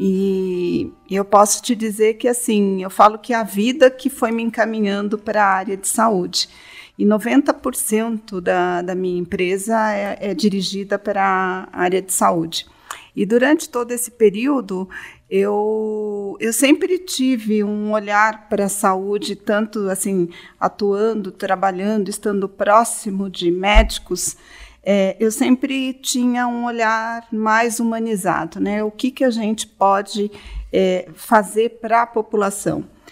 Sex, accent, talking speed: female, Brazilian, 140 wpm